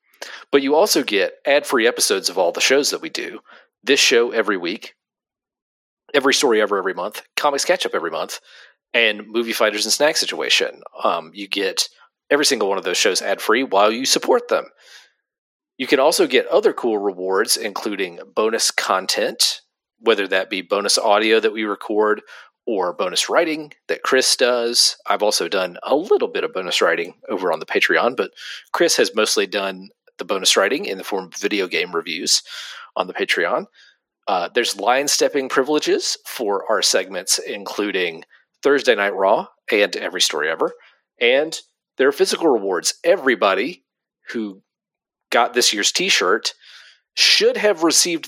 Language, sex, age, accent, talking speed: English, male, 40-59, American, 165 wpm